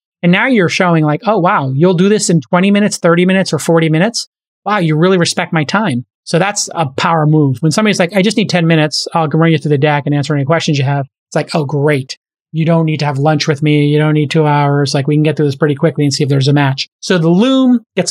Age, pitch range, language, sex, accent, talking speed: 30-49, 155-185 Hz, English, male, American, 280 wpm